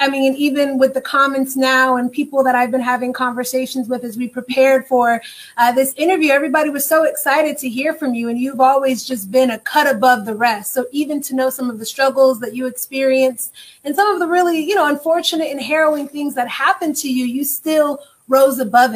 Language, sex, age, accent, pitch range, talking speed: English, female, 30-49, American, 250-290 Hz, 225 wpm